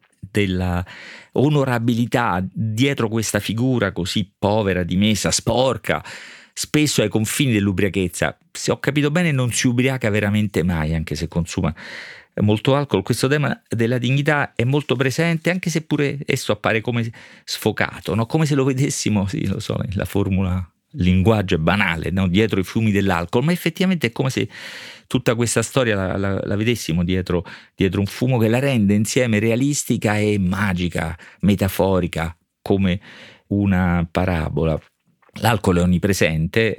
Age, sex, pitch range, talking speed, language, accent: 40-59, male, 90-120 Hz, 145 wpm, Italian, native